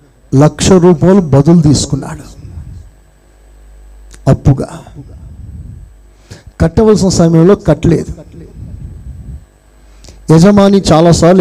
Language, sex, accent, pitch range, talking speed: Telugu, male, native, 140-190 Hz, 55 wpm